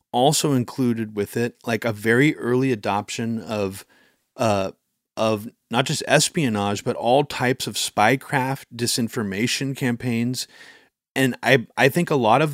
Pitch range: 110-135 Hz